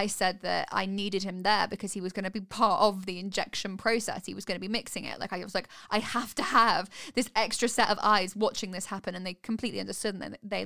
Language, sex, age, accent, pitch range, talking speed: English, female, 10-29, British, 205-255 Hz, 270 wpm